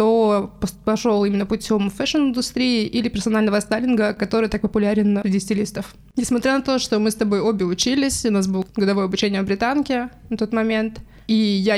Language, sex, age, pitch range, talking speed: Russian, female, 20-39, 205-240 Hz, 175 wpm